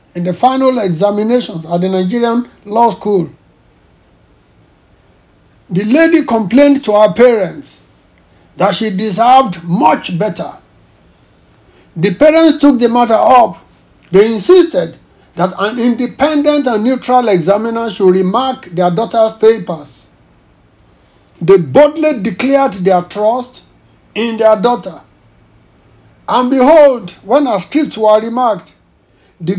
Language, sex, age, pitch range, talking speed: English, male, 60-79, 190-260 Hz, 110 wpm